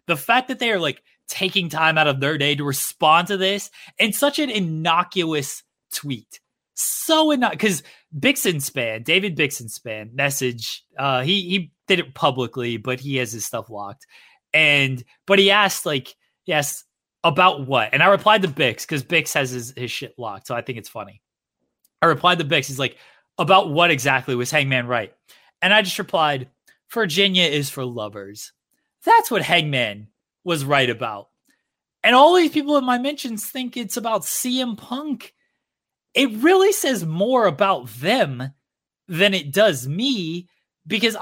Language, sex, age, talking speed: English, male, 20-39, 170 wpm